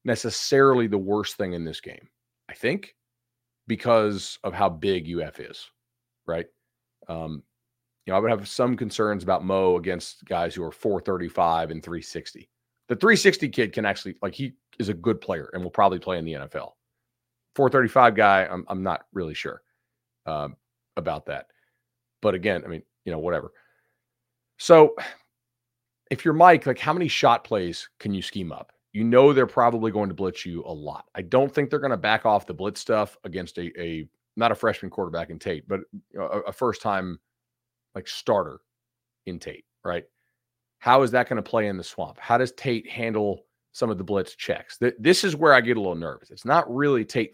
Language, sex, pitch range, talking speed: English, male, 100-125 Hz, 190 wpm